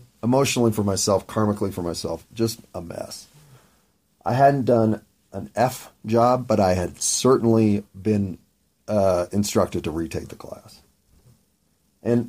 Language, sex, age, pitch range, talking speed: English, male, 40-59, 95-115 Hz, 130 wpm